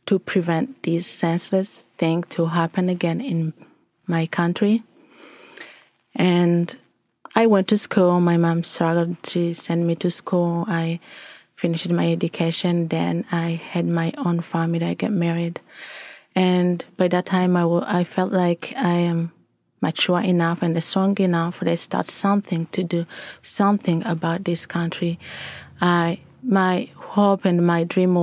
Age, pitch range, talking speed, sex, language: 30-49, 165-185 Hz, 140 wpm, female, English